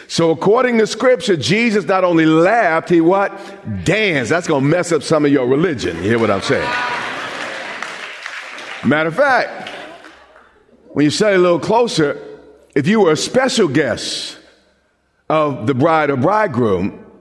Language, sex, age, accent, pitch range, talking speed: English, male, 50-69, American, 155-225 Hz, 155 wpm